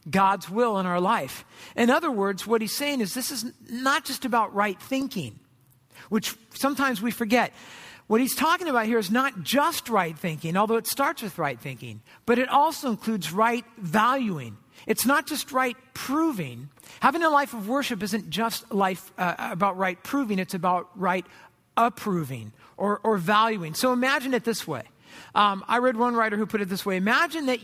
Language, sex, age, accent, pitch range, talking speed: English, male, 50-69, American, 185-250 Hz, 185 wpm